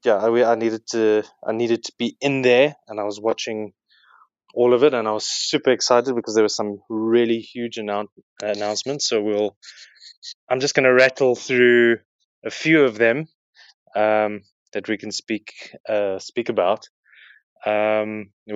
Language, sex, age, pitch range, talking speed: English, male, 20-39, 105-125 Hz, 170 wpm